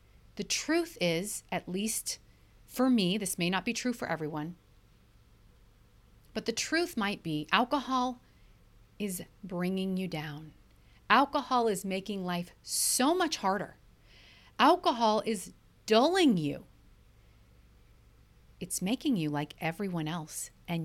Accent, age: American, 40-59